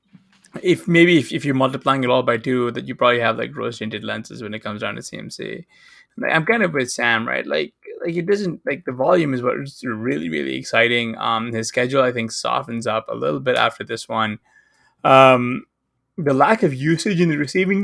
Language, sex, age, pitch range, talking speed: English, male, 20-39, 125-150 Hz, 215 wpm